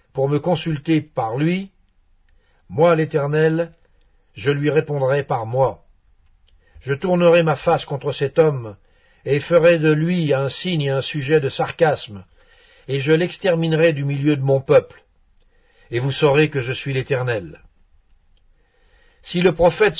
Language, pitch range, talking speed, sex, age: French, 130-160 Hz, 145 wpm, male, 60-79